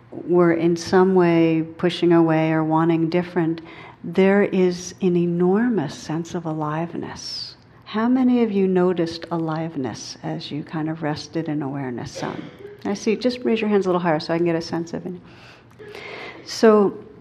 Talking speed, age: 165 wpm, 60-79